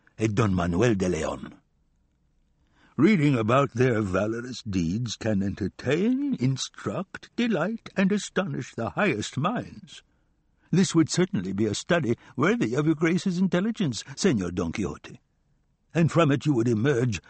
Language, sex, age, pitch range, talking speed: English, male, 60-79, 110-165 Hz, 135 wpm